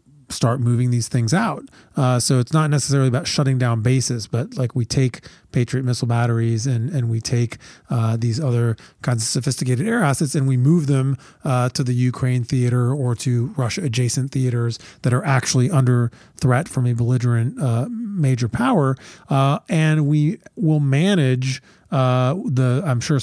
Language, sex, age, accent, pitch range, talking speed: English, male, 30-49, American, 125-145 Hz, 175 wpm